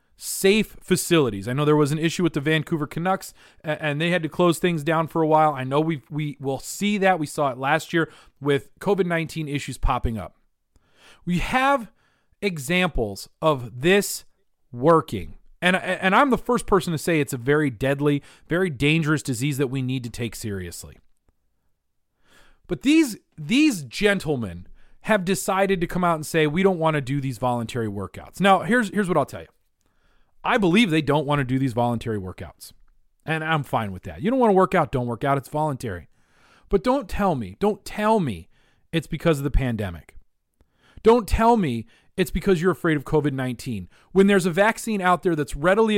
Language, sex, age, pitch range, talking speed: English, male, 30-49, 135-185 Hz, 190 wpm